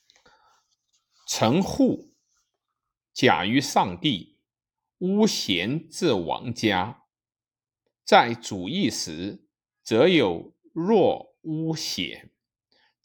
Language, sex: Chinese, male